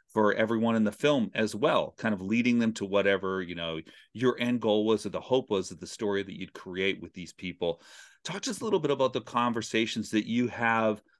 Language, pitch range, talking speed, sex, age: English, 100-125 Hz, 235 wpm, male, 40-59